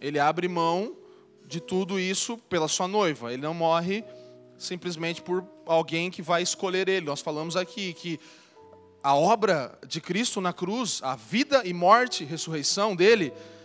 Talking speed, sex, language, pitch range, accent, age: 155 wpm, male, Portuguese, 165-220 Hz, Brazilian, 20-39